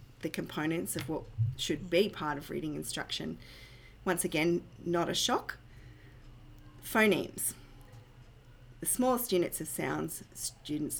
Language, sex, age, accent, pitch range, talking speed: English, female, 30-49, Australian, 125-185 Hz, 120 wpm